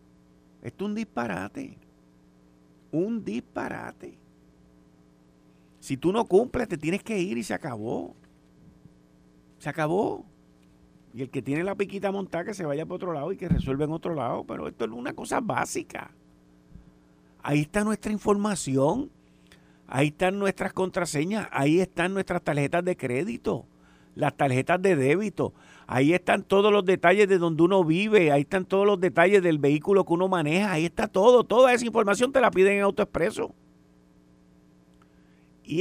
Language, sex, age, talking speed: Spanish, male, 50-69, 155 wpm